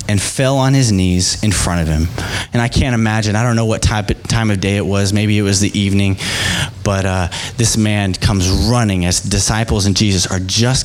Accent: American